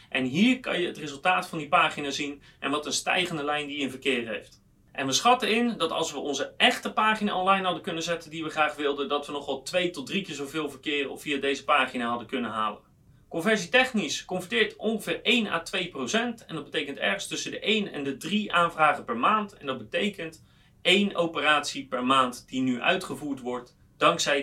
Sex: male